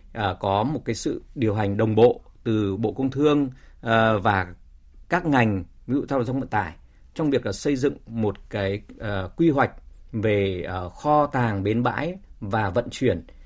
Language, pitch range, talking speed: Vietnamese, 95-125 Hz, 170 wpm